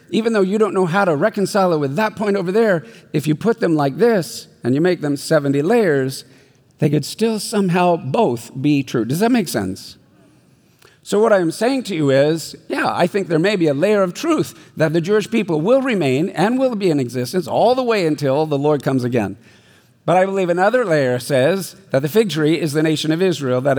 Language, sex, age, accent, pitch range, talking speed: English, male, 50-69, American, 140-195 Hz, 225 wpm